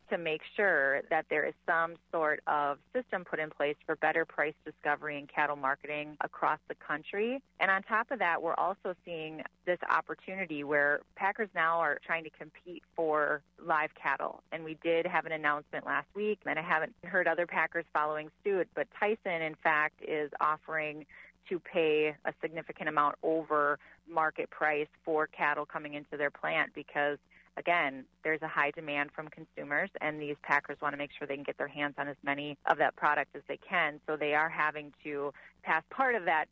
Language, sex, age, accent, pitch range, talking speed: English, female, 30-49, American, 150-165 Hz, 190 wpm